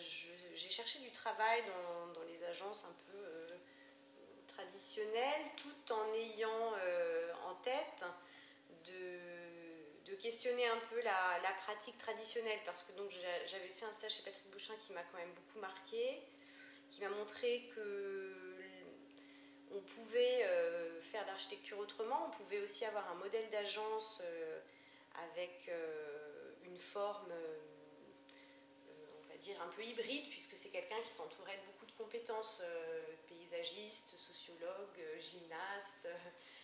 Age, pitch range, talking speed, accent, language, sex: 30-49, 175-290 Hz, 140 wpm, French, French, female